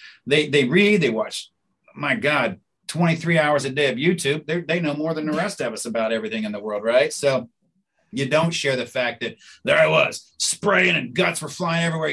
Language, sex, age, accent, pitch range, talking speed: English, male, 40-59, American, 115-150 Hz, 220 wpm